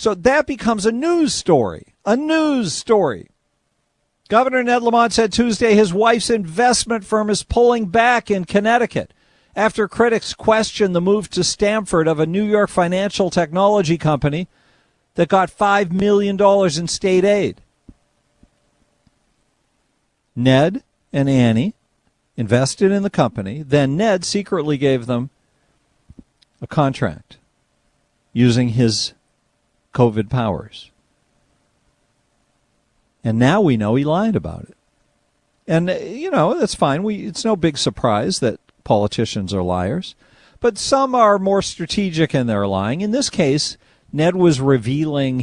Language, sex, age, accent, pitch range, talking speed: English, male, 50-69, American, 135-210 Hz, 130 wpm